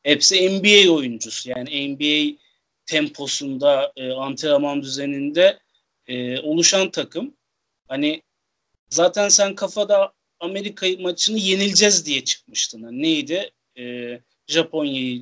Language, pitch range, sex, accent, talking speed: Turkish, 135-190 Hz, male, native, 100 wpm